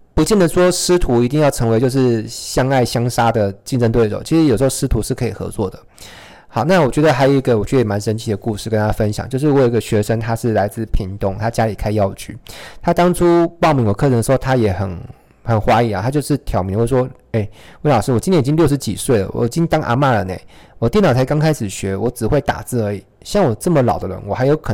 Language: Chinese